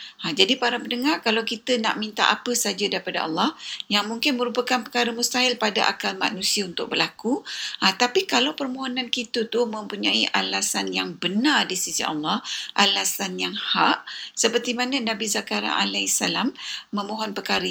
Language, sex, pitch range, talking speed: Malay, female, 205-255 Hz, 150 wpm